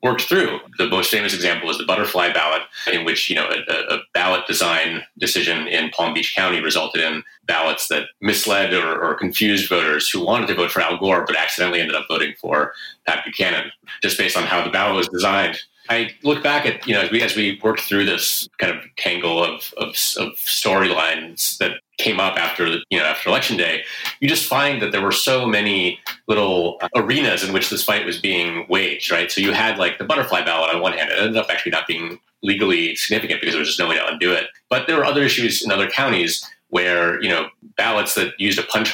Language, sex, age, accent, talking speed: English, male, 30-49, American, 220 wpm